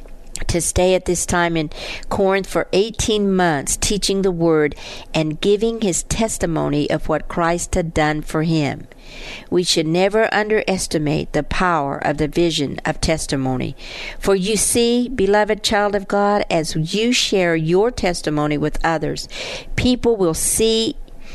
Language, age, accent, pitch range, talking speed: English, 50-69, American, 160-195 Hz, 145 wpm